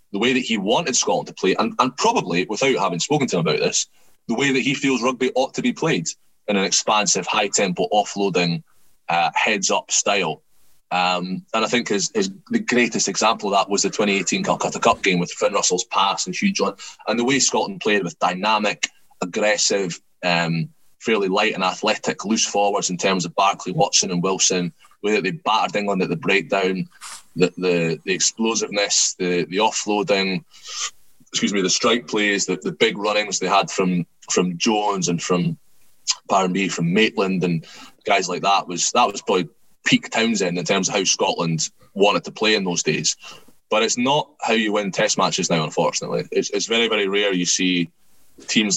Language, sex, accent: English, male, British